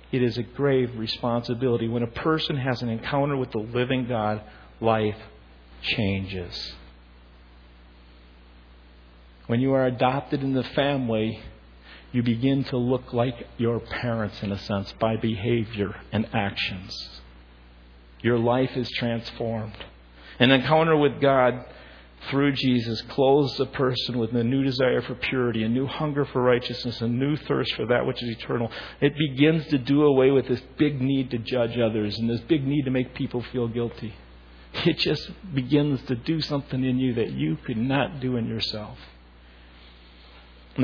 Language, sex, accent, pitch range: English, male, American, 85-135 Hz